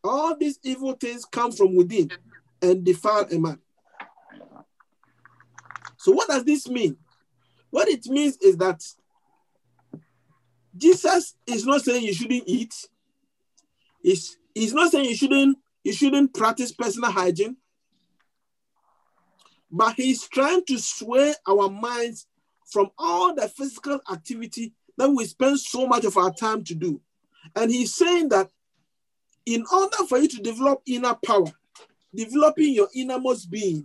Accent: Nigerian